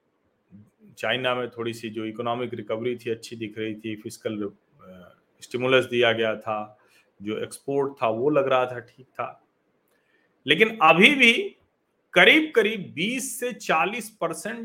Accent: native